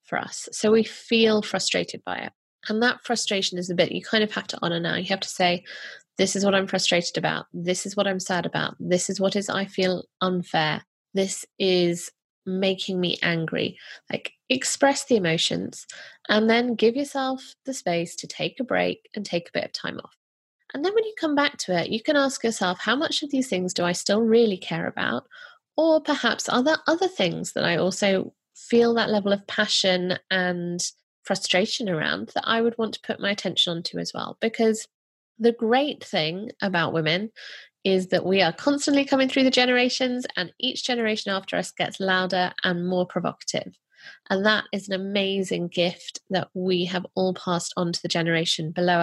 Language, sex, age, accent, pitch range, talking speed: English, female, 20-39, British, 180-230 Hz, 200 wpm